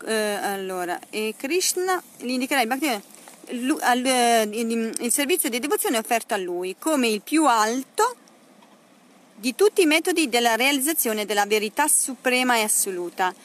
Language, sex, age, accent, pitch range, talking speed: Italian, female, 40-59, native, 220-300 Hz, 115 wpm